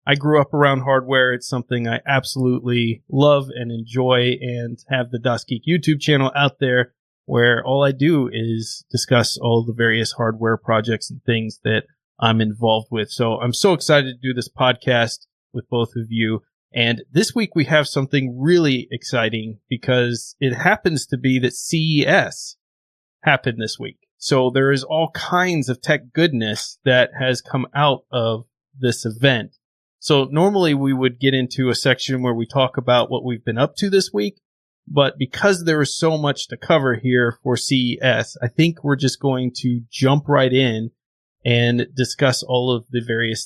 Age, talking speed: 30-49, 175 wpm